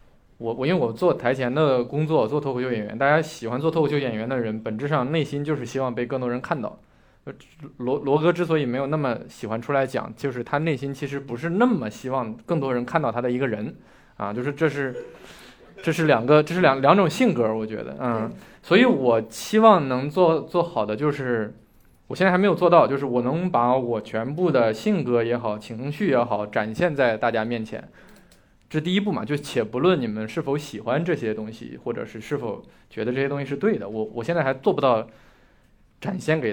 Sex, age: male, 20-39